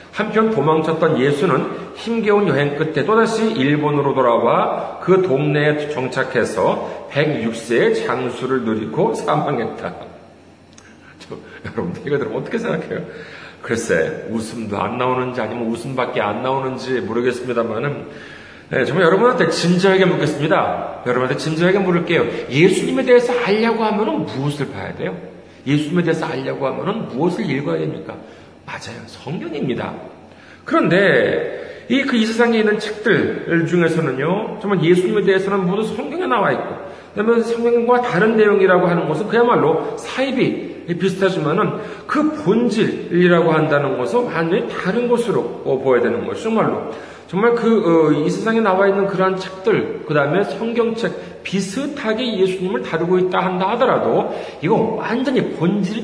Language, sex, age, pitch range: Korean, male, 40-59, 150-220 Hz